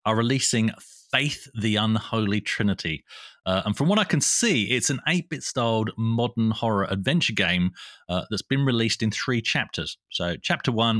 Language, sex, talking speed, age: English, male, 170 wpm, 30-49